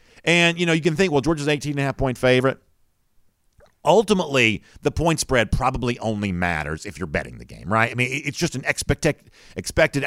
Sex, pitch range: male, 100-155 Hz